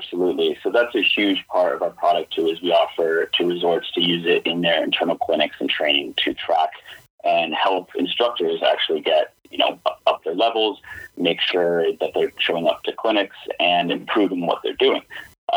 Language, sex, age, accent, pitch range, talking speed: English, male, 30-49, American, 295-420 Hz, 195 wpm